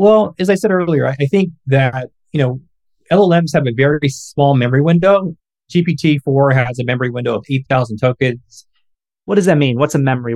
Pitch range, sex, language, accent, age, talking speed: 135-165 Hz, male, English, American, 30-49, 185 wpm